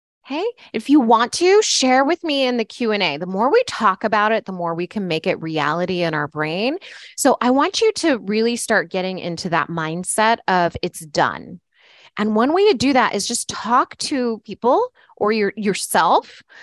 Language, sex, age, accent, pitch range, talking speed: English, female, 20-39, American, 185-275 Hz, 195 wpm